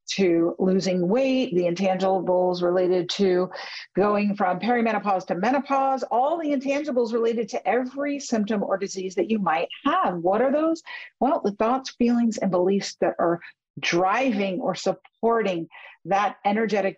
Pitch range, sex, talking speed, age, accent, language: 185-240 Hz, female, 145 wpm, 50-69, American, English